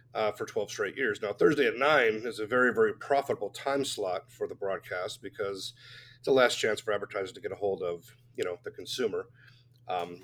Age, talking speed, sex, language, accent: 40-59, 210 wpm, male, English, American